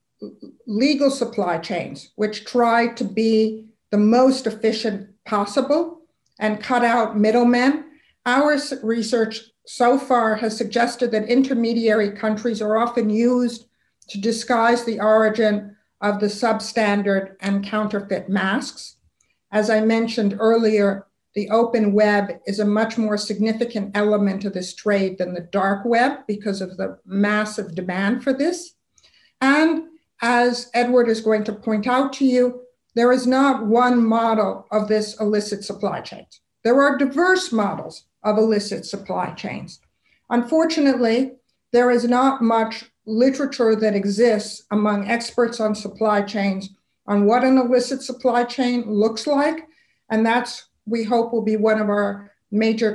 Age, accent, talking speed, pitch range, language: 60-79, American, 140 wpm, 210-245 Hz, English